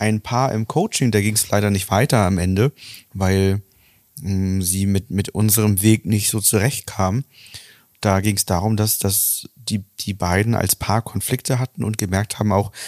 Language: German